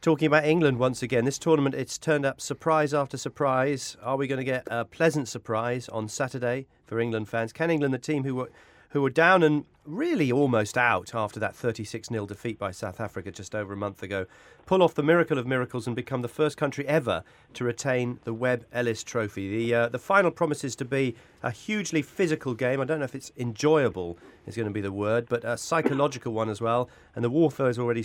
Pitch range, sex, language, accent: 115-145 Hz, male, English, British